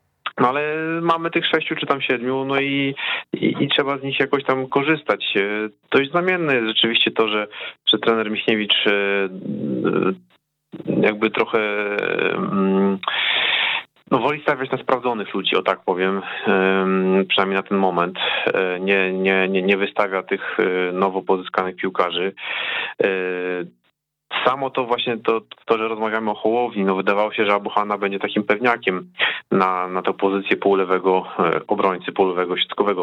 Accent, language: native, Polish